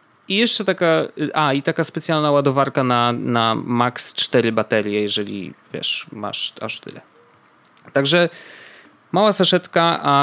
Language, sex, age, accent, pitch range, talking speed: Polish, male, 20-39, native, 115-145 Hz, 130 wpm